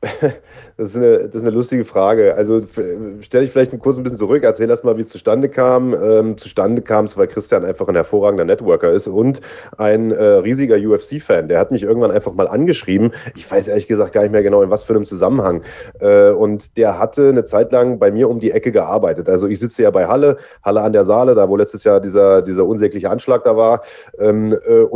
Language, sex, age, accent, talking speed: German, male, 30-49, German, 225 wpm